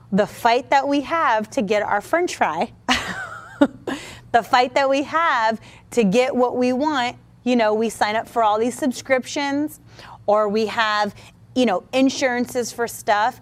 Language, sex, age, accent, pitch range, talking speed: English, female, 30-49, American, 210-270 Hz, 165 wpm